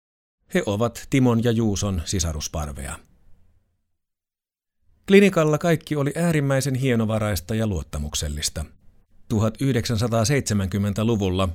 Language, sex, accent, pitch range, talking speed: Finnish, male, native, 90-120 Hz, 75 wpm